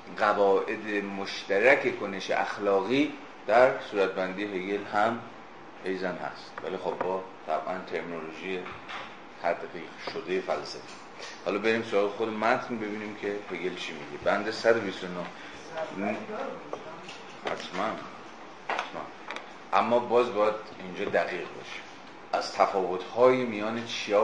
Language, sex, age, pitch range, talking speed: Persian, male, 30-49, 95-115 Hz, 105 wpm